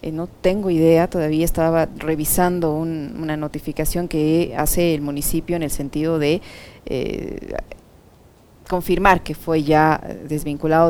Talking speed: 125 wpm